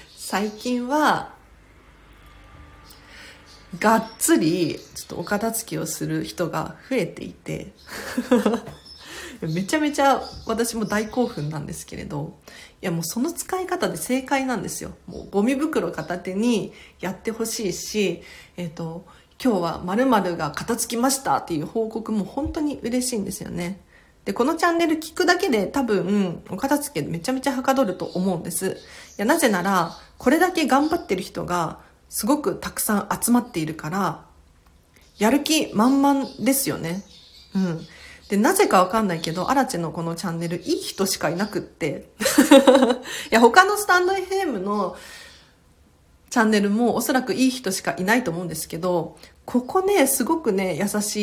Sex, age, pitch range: female, 40-59, 175-265 Hz